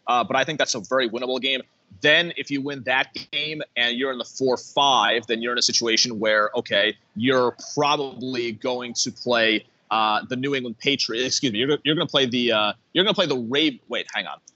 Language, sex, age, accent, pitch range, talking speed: English, male, 30-49, American, 120-150 Hz, 215 wpm